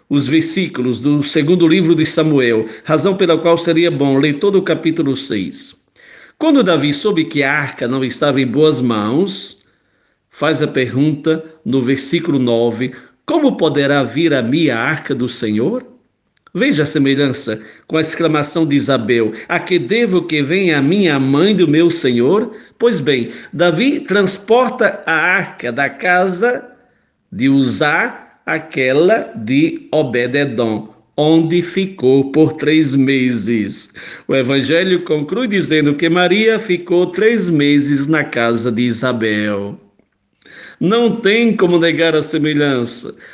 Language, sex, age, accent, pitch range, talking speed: Portuguese, male, 50-69, Brazilian, 140-215 Hz, 135 wpm